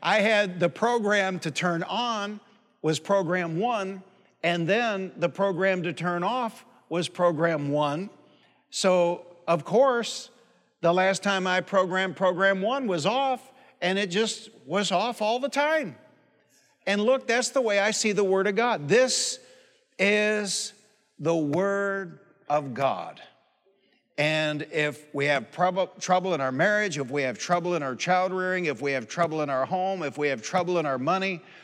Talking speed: 165 wpm